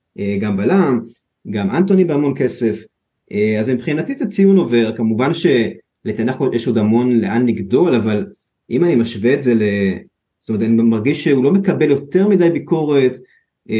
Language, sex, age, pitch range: Hebrew, male, 30-49, 120-185 Hz